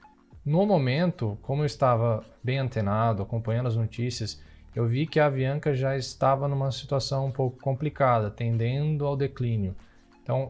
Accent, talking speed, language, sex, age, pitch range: Brazilian, 150 wpm, Portuguese, male, 20-39, 115-135 Hz